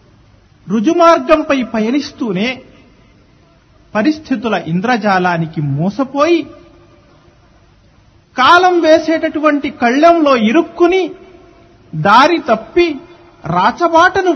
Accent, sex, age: native, male, 50-69